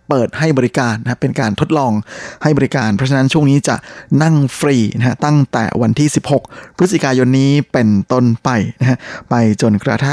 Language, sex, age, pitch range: Thai, male, 20-39, 115-145 Hz